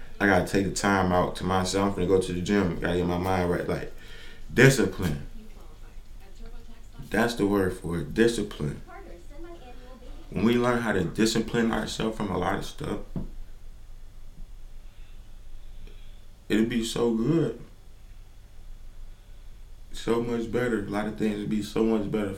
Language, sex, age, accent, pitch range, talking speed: English, male, 20-39, American, 95-110 Hz, 150 wpm